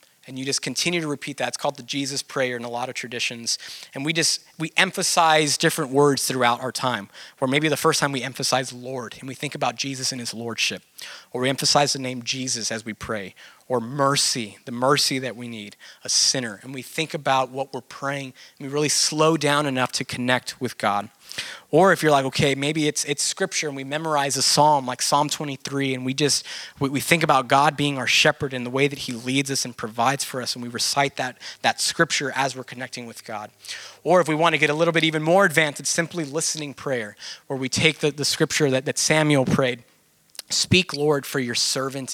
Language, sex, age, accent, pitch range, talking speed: English, male, 20-39, American, 130-155 Hz, 225 wpm